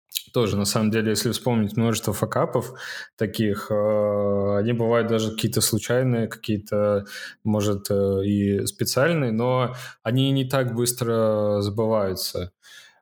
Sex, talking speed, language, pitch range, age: male, 110 wpm, Russian, 105-120 Hz, 20-39